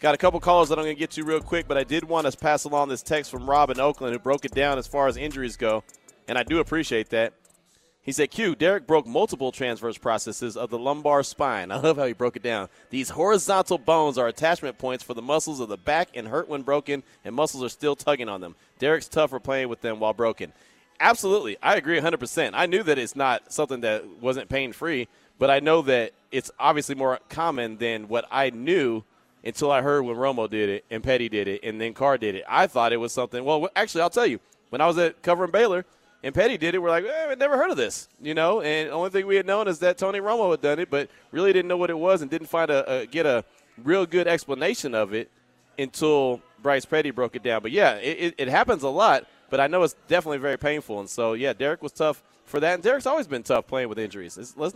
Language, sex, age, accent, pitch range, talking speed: English, male, 30-49, American, 125-165 Hz, 255 wpm